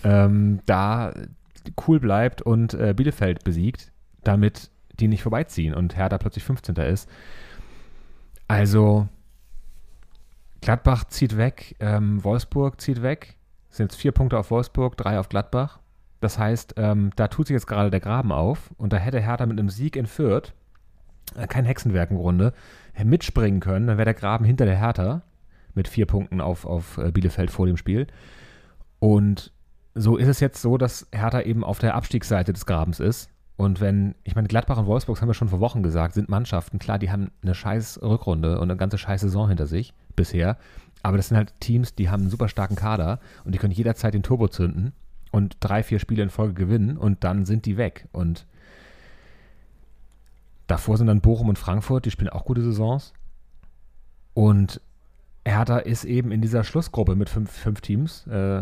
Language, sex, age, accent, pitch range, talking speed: German, male, 30-49, German, 95-115 Hz, 175 wpm